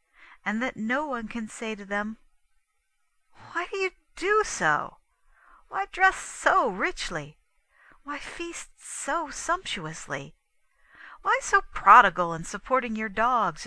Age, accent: 50-69, American